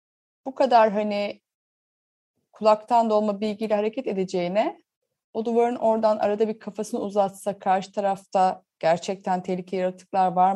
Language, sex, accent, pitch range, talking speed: Turkish, female, native, 200-265 Hz, 120 wpm